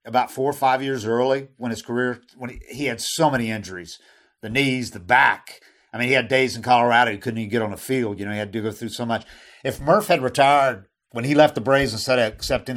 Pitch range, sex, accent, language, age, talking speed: 125-160 Hz, male, American, English, 50-69, 260 wpm